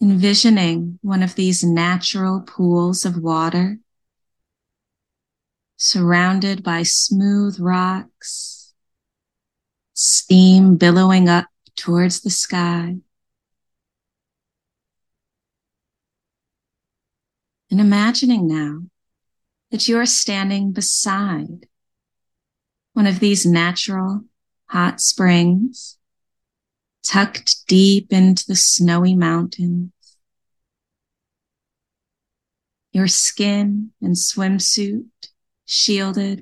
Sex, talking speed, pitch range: female, 70 wpm, 180-205 Hz